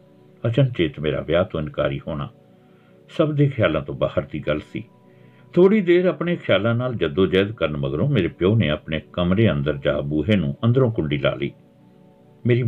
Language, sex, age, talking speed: Punjabi, male, 60-79, 165 wpm